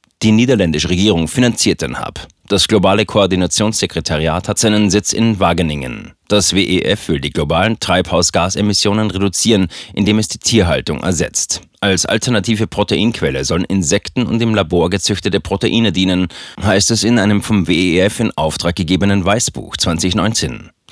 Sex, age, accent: male, 30-49, German